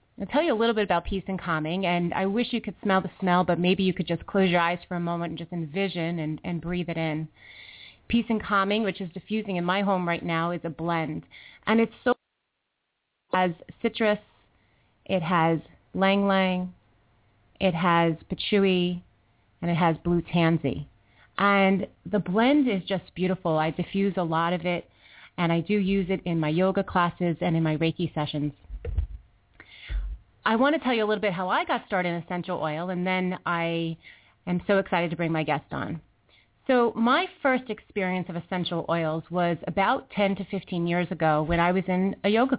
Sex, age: female, 30-49